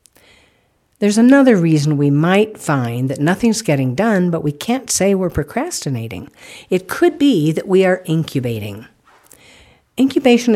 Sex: female